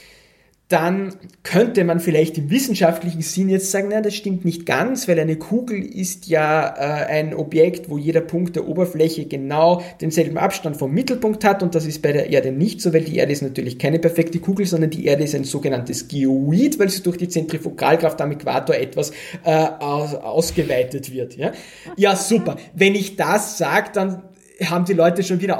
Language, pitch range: German, 155-190 Hz